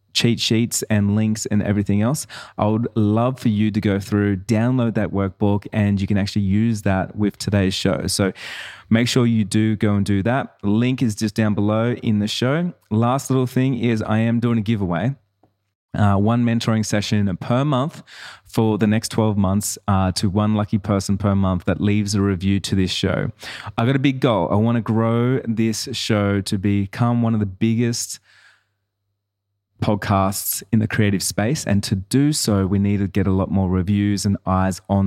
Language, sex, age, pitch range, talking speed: English, male, 20-39, 100-115 Hz, 195 wpm